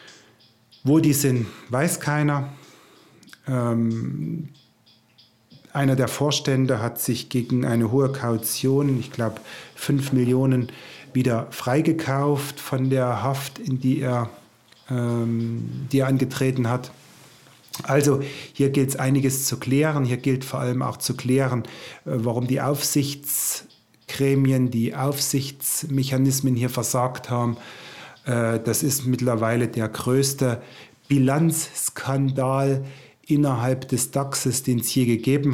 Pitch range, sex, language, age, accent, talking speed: 120-140 Hz, male, German, 30-49, German, 115 wpm